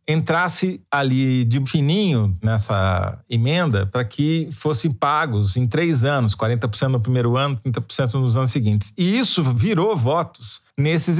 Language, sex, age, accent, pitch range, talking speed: Portuguese, male, 40-59, Brazilian, 110-155 Hz, 140 wpm